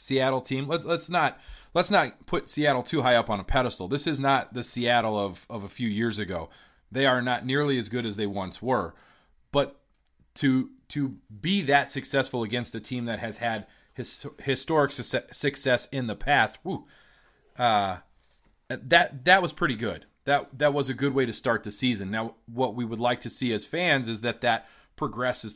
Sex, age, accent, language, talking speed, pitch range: male, 30-49, American, English, 195 wpm, 110-135 Hz